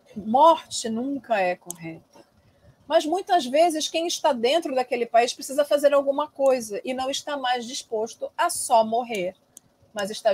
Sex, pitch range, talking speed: female, 205-310 Hz, 150 wpm